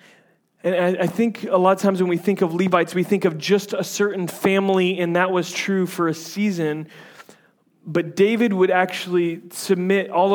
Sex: male